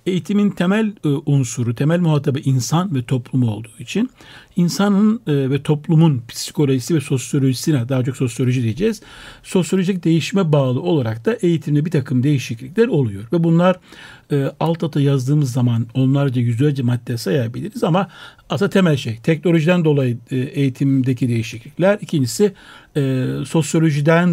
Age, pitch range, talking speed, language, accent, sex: 60-79, 130-170 Hz, 135 wpm, Turkish, native, male